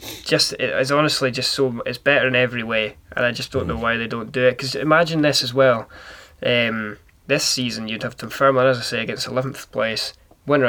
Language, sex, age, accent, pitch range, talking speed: English, male, 20-39, British, 115-130 Hz, 215 wpm